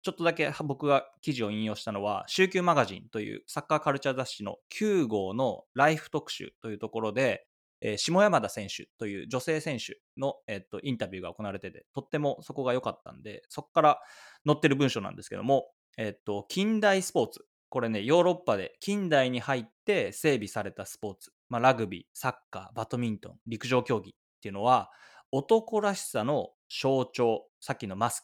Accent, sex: Japanese, male